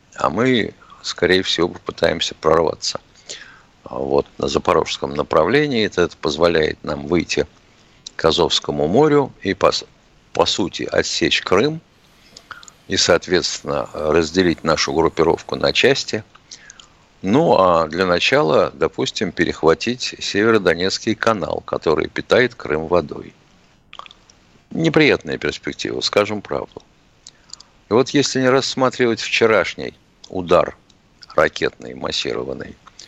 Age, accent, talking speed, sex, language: 60-79, native, 100 wpm, male, Russian